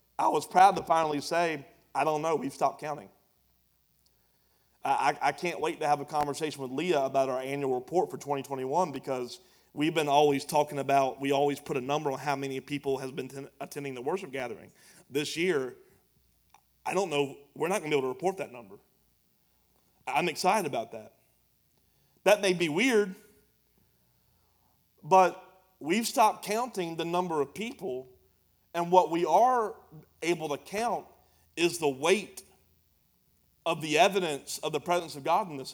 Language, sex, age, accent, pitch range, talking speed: English, male, 30-49, American, 130-175 Hz, 170 wpm